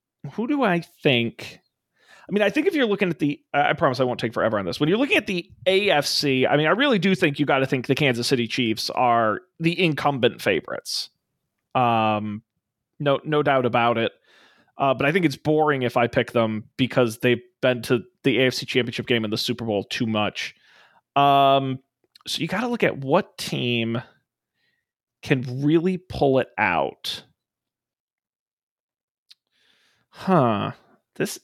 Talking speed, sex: 175 wpm, male